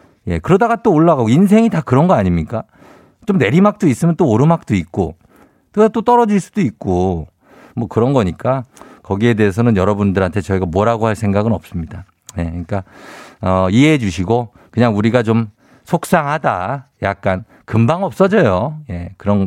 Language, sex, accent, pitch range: Korean, male, native, 100-160 Hz